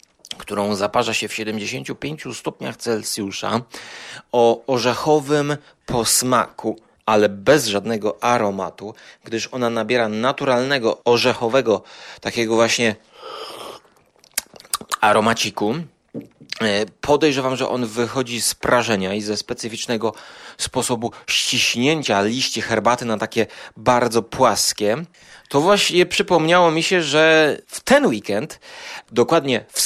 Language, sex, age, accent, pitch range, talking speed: Polish, male, 30-49, native, 115-155 Hz, 100 wpm